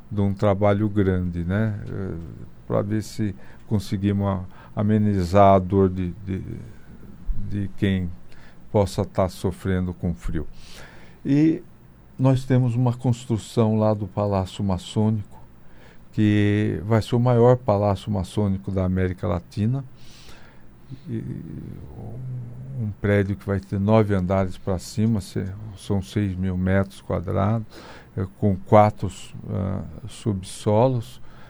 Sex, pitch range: male, 95-110 Hz